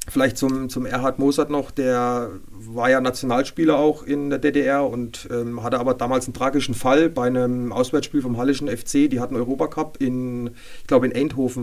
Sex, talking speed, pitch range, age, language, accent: male, 190 wpm, 120-140 Hz, 30-49, German, German